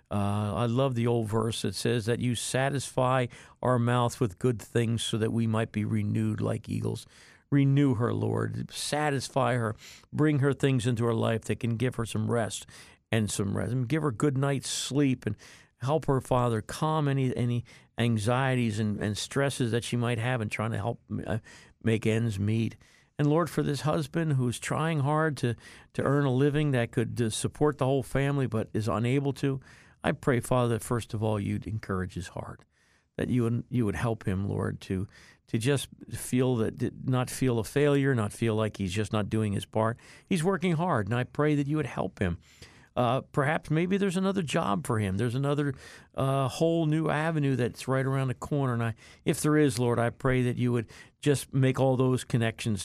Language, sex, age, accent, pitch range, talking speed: English, male, 50-69, American, 110-140 Hz, 205 wpm